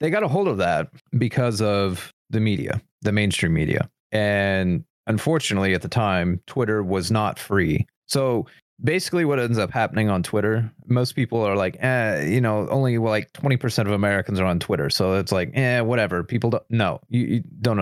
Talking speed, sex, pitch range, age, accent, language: 190 wpm, male, 100-125 Hz, 30-49, American, English